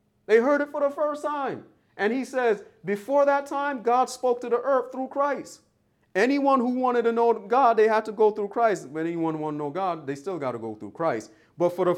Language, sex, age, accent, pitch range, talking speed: English, male, 30-49, American, 160-225 Hz, 240 wpm